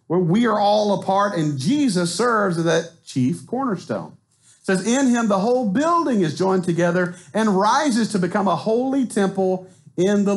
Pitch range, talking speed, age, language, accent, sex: 135-175 Hz, 180 wpm, 50-69, English, American, male